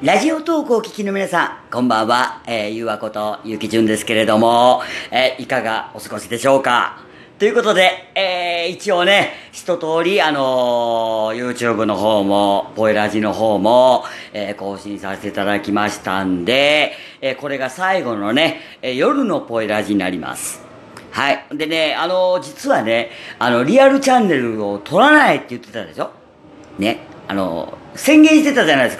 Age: 40-59